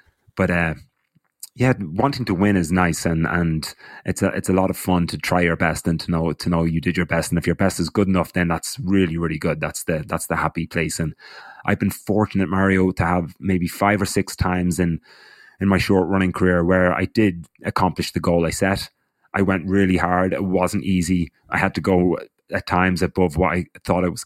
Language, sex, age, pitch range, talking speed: English, male, 30-49, 85-95 Hz, 230 wpm